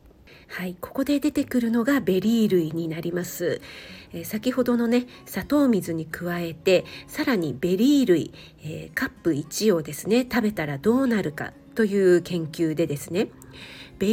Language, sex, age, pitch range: Japanese, female, 50-69, 175-225 Hz